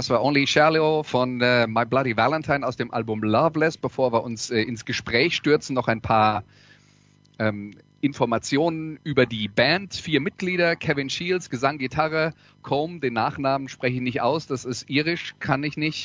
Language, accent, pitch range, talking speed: German, German, 115-150 Hz, 175 wpm